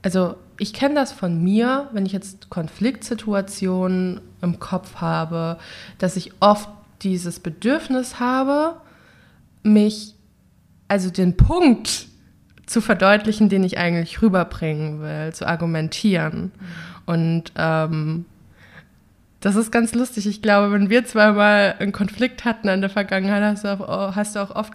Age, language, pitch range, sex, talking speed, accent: 20-39, German, 175-220 Hz, female, 140 wpm, German